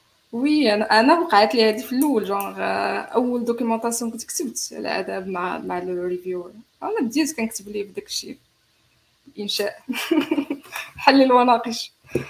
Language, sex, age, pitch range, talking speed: Arabic, female, 20-39, 180-255 Hz, 90 wpm